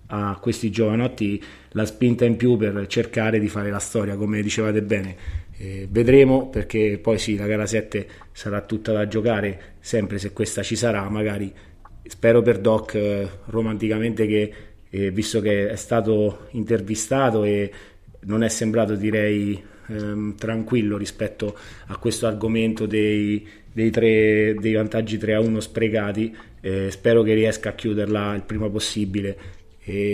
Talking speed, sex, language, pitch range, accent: 150 wpm, male, Italian, 105-115 Hz, native